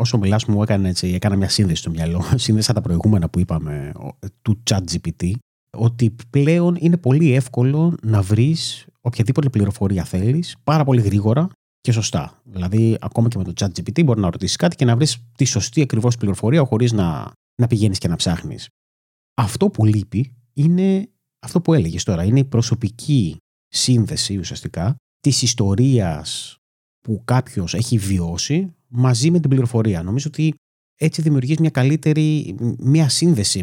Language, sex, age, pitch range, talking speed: Greek, male, 30-49, 100-150 Hz, 155 wpm